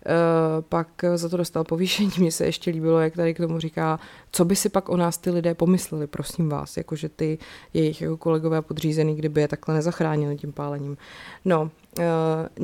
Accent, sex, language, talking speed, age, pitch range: native, female, Czech, 190 wpm, 30-49, 160-180 Hz